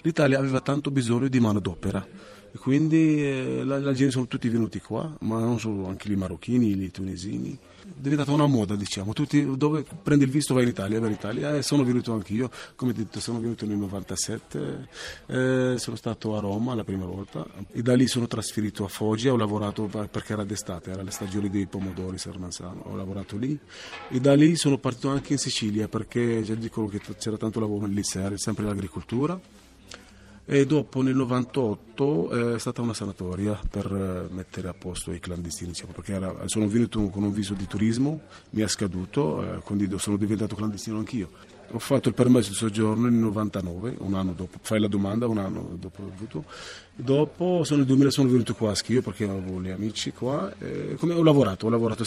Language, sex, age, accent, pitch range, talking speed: Italian, male, 30-49, native, 100-125 Hz, 190 wpm